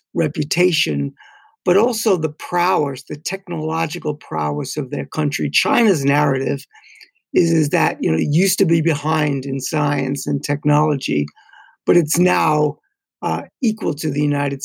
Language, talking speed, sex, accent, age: English, 145 wpm, male, American, 60-79